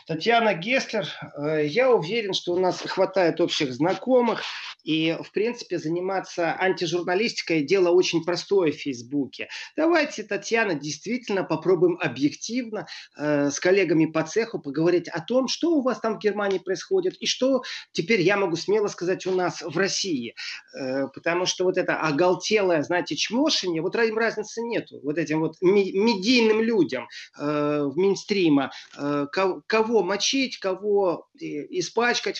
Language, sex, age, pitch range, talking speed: Russian, male, 30-49, 160-220 Hz, 145 wpm